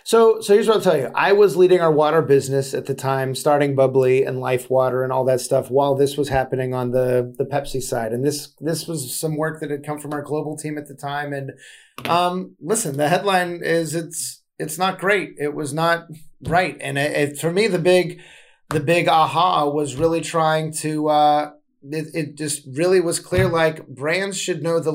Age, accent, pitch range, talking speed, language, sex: 30-49, American, 140-170 Hz, 215 wpm, English, male